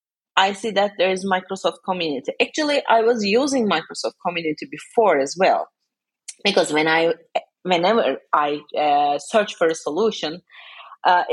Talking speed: 145 wpm